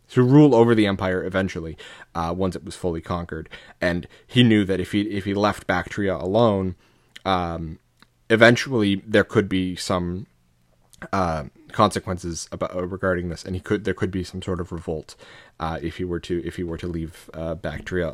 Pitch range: 85-105 Hz